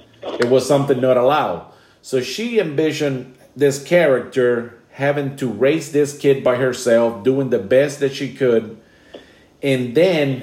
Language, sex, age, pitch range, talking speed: English, male, 50-69, 125-155 Hz, 145 wpm